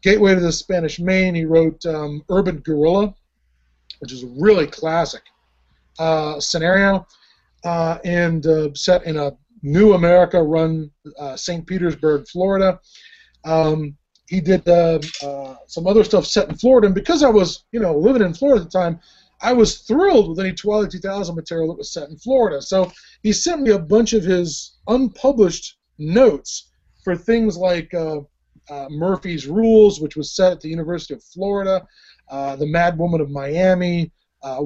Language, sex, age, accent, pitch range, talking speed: English, male, 20-39, American, 155-195 Hz, 170 wpm